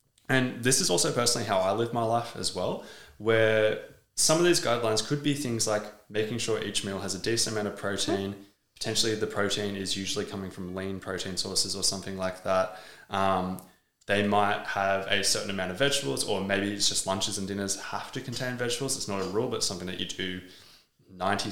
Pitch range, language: 95-120 Hz, English